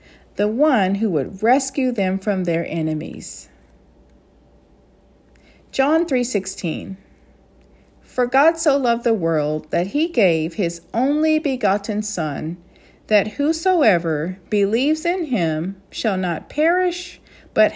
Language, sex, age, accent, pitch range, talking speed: English, female, 50-69, American, 175-280 Hz, 110 wpm